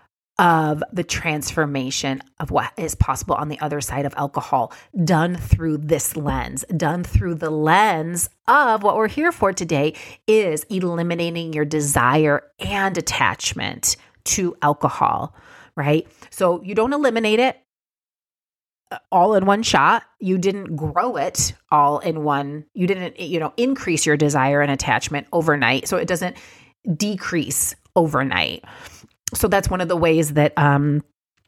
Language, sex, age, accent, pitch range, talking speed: English, female, 30-49, American, 150-180 Hz, 145 wpm